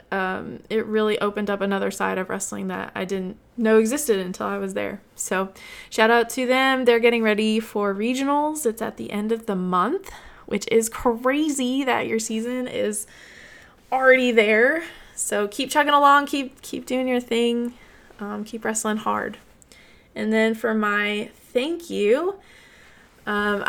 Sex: female